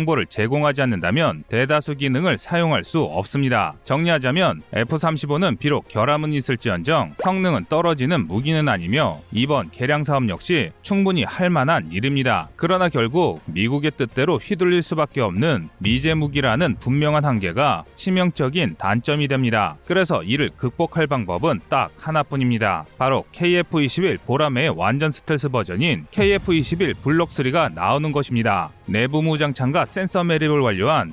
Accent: native